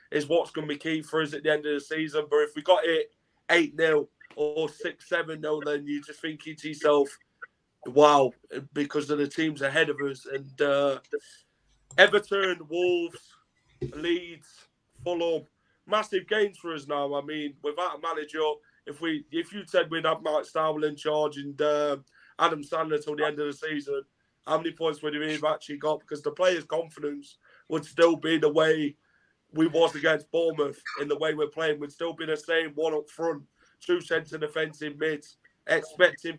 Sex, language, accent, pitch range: male, English, British, 150-180 Hz